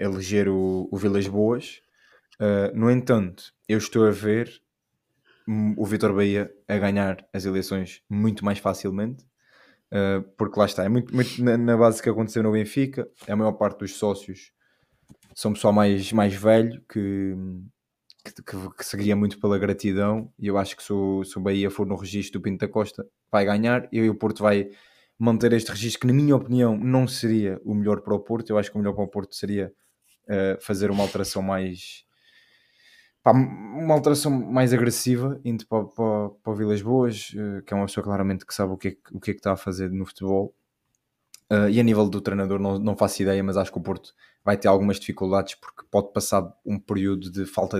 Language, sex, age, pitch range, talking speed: Portuguese, male, 20-39, 100-110 Hz, 195 wpm